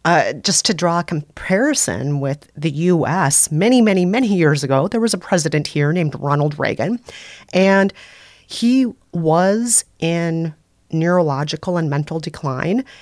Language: English